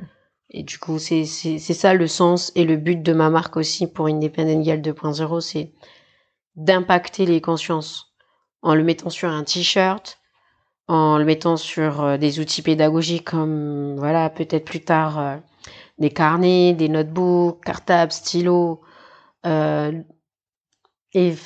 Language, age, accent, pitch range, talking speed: French, 40-59, French, 155-180 Hz, 140 wpm